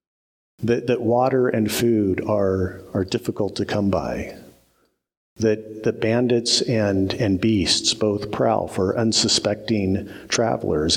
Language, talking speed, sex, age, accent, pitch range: English, 120 wpm, male, 50-69, American, 100-125 Hz